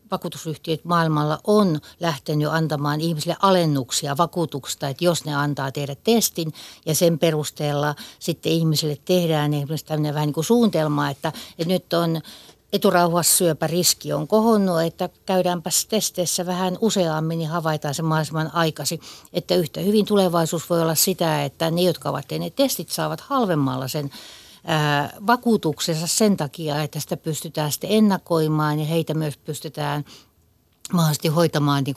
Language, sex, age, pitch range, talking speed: Finnish, female, 60-79, 150-180 Hz, 140 wpm